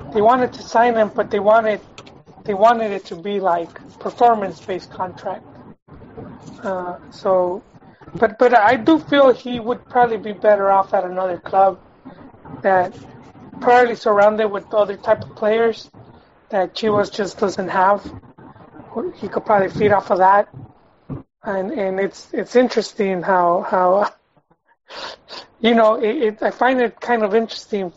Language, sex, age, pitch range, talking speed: English, male, 30-49, 195-235 Hz, 150 wpm